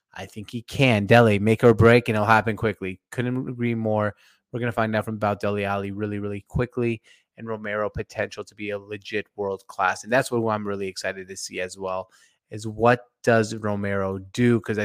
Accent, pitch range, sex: American, 100-120 Hz, male